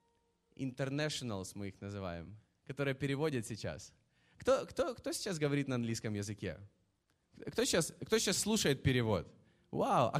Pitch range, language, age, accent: 140-205 Hz, Russian, 20-39, native